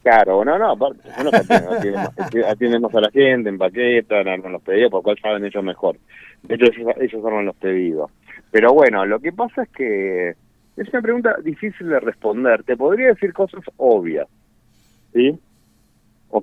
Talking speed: 165 wpm